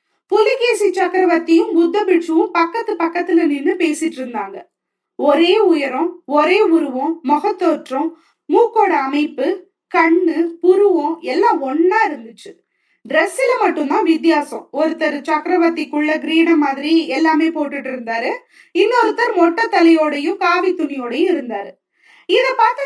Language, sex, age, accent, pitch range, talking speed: Tamil, female, 20-39, native, 305-405 Hz, 100 wpm